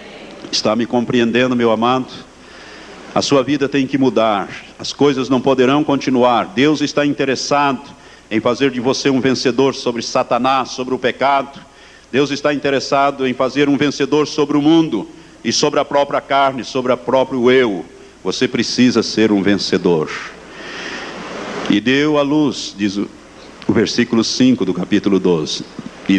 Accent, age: Brazilian, 60-79